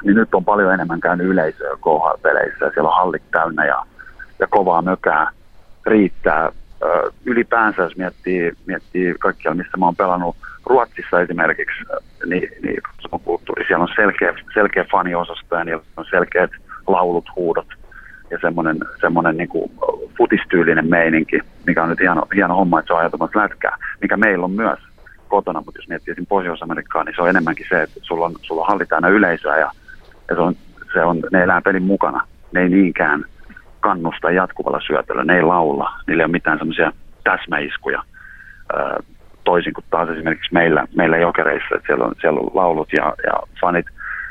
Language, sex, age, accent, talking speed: Finnish, male, 30-49, native, 165 wpm